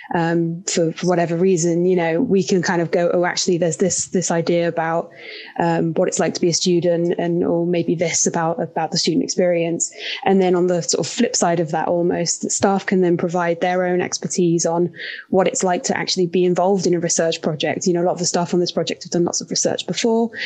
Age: 20-39